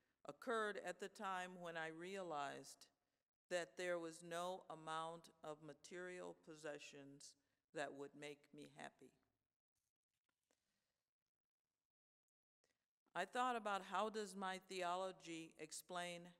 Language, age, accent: English, 50-69, American